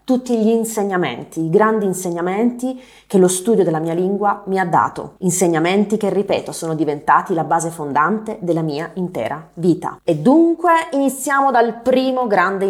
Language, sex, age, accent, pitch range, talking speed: Italian, female, 30-49, native, 180-260 Hz, 155 wpm